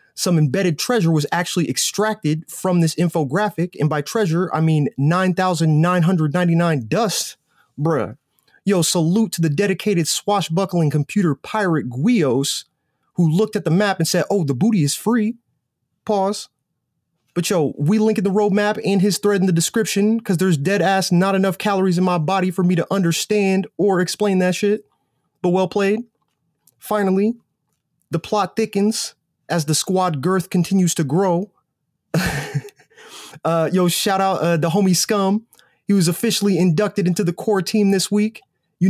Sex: male